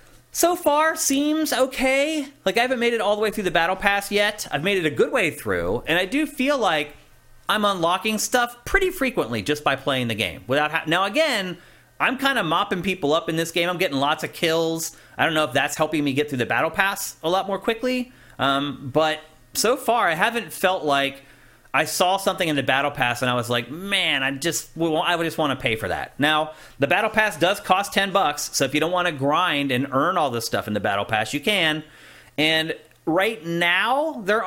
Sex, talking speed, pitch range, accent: male, 230 wpm, 140-205 Hz, American